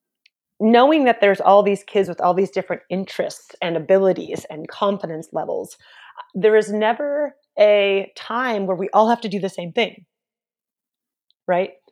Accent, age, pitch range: American, 30-49, 195-260 Hz